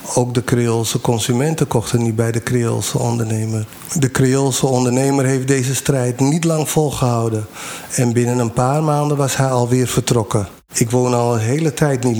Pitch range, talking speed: 120-140 Hz, 170 wpm